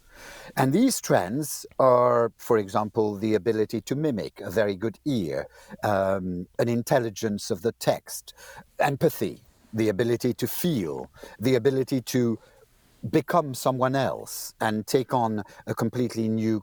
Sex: male